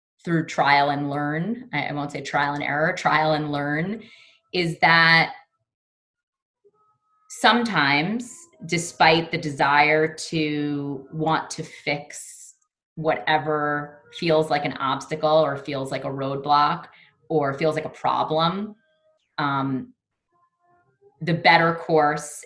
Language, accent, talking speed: English, American, 110 wpm